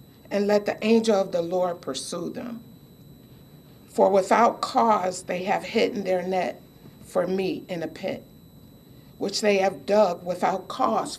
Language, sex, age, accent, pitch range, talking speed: English, female, 60-79, American, 185-225 Hz, 150 wpm